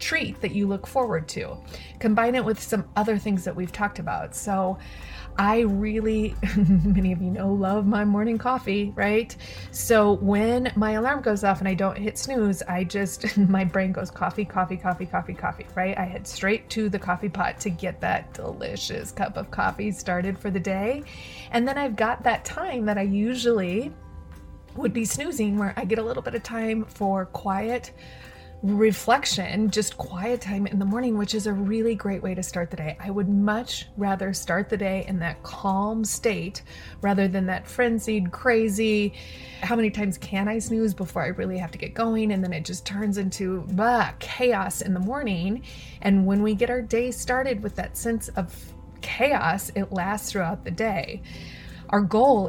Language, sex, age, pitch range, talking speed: English, female, 30-49, 190-220 Hz, 190 wpm